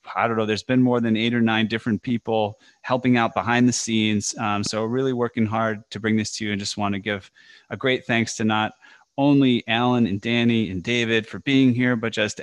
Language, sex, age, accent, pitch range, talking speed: English, male, 30-49, American, 105-125 Hz, 230 wpm